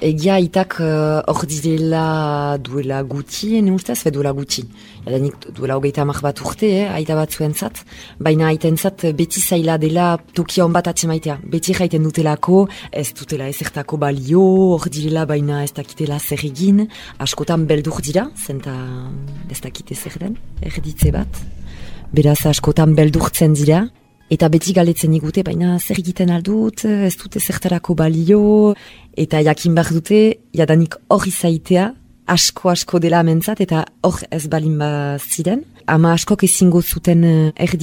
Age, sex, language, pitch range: 20-39, female, French, 145-175 Hz